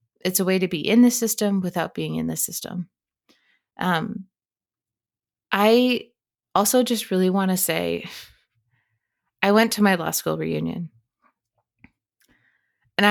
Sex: female